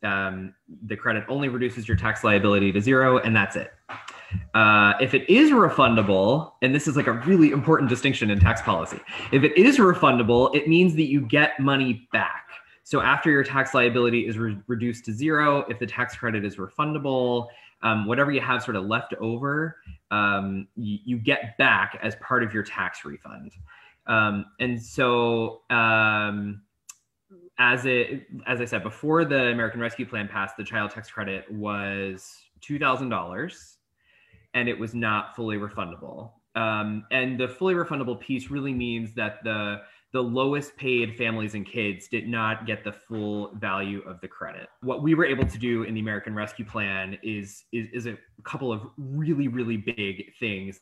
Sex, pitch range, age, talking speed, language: male, 105-130 Hz, 20-39, 175 wpm, English